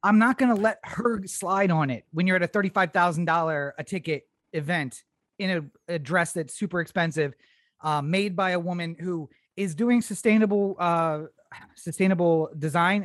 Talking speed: 160 wpm